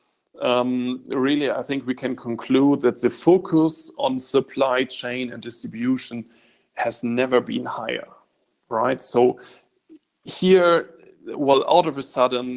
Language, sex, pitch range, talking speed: English, male, 120-160 Hz, 130 wpm